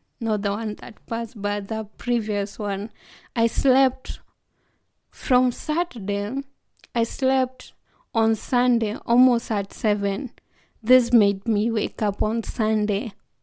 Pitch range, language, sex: 215-270 Hz, English, female